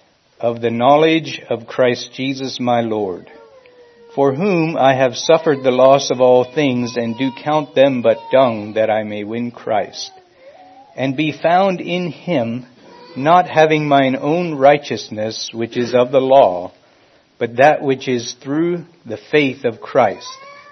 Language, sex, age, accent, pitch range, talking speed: English, male, 60-79, American, 125-170 Hz, 155 wpm